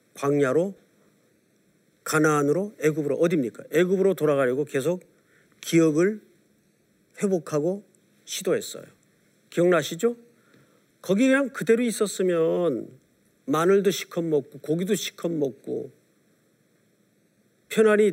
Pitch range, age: 165-230 Hz, 40-59